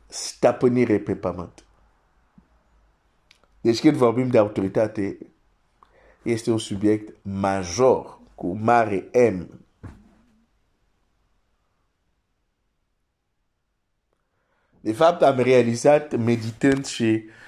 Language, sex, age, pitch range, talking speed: Romanian, male, 50-69, 105-135 Hz, 70 wpm